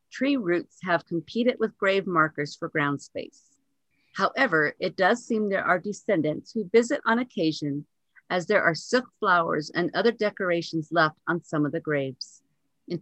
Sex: female